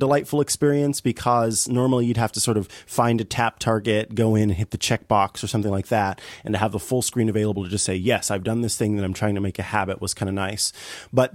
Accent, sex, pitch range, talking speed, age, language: American, male, 105-130 Hz, 265 wpm, 30-49, English